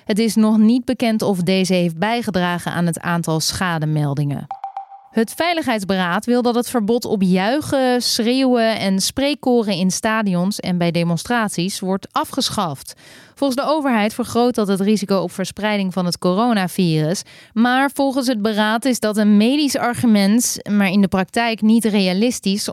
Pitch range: 180-235 Hz